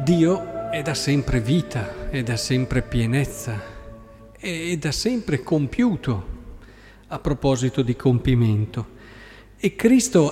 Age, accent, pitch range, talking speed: 50-69, native, 125-195 Hz, 110 wpm